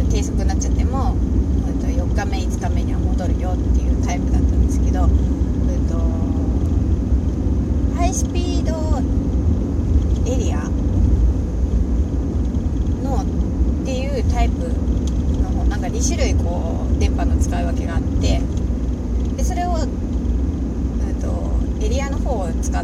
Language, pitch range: Japanese, 70-85 Hz